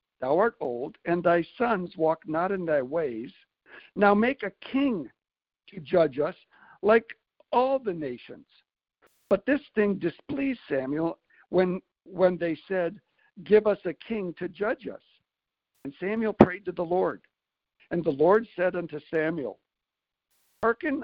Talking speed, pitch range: 145 wpm, 170-220 Hz